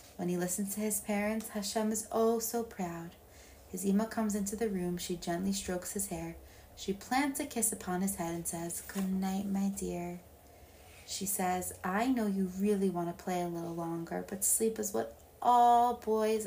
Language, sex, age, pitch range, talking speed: English, female, 20-39, 175-225 Hz, 195 wpm